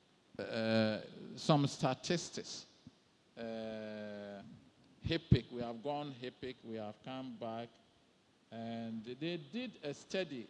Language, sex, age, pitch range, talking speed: English, male, 50-69, 120-165 Hz, 105 wpm